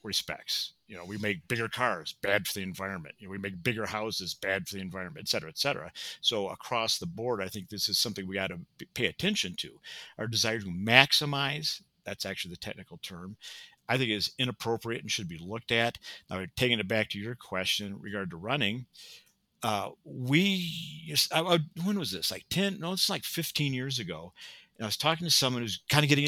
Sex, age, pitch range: male, 50-69, 100-140 Hz